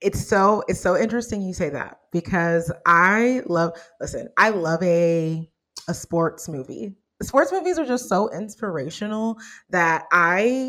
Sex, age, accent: female, 20-39, American